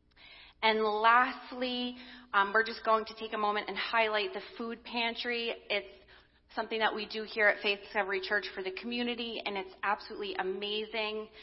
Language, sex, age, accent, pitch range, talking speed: English, female, 30-49, American, 195-235 Hz, 170 wpm